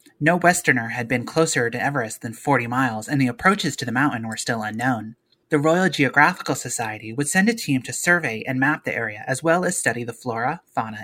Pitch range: 120-155 Hz